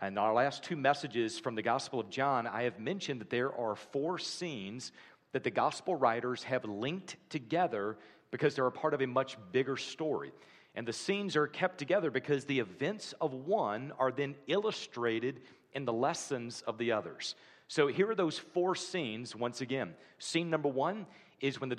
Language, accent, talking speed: English, American, 185 wpm